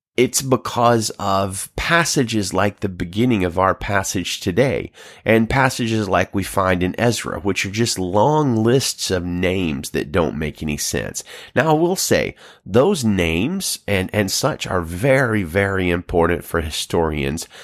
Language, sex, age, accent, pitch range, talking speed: English, male, 30-49, American, 90-120 Hz, 155 wpm